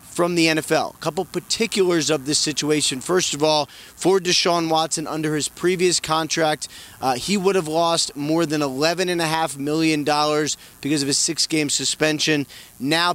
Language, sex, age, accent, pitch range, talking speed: English, male, 30-49, American, 145-175 Hz, 170 wpm